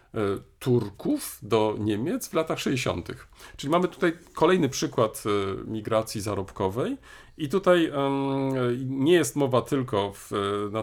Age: 40-59